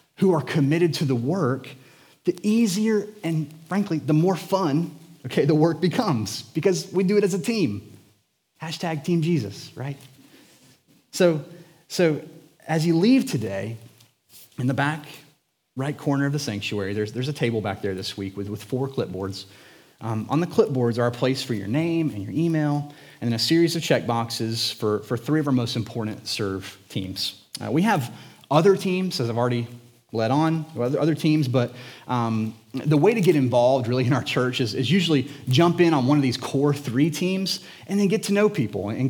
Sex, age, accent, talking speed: male, 30-49, American, 190 wpm